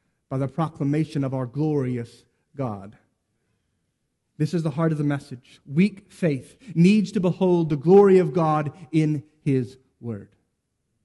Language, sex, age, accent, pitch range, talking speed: English, male, 30-49, American, 150-195 Hz, 140 wpm